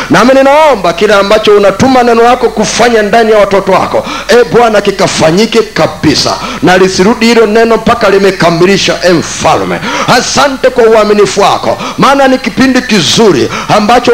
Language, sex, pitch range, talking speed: Swahili, male, 200-255 Hz, 140 wpm